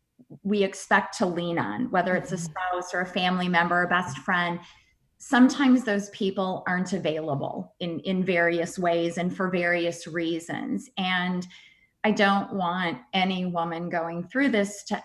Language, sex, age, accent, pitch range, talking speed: English, female, 30-49, American, 175-195 Hz, 155 wpm